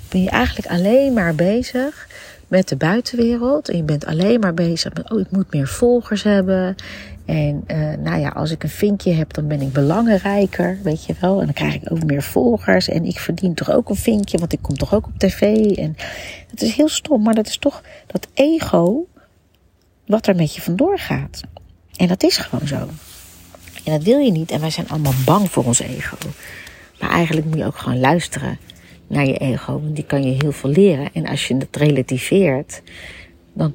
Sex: female